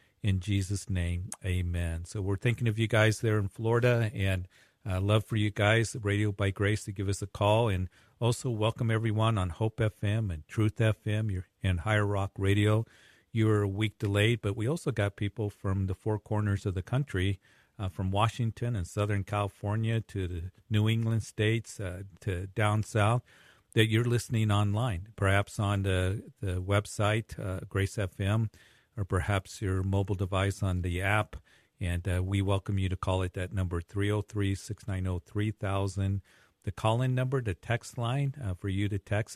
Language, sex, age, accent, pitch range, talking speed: English, male, 50-69, American, 95-110 Hz, 175 wpm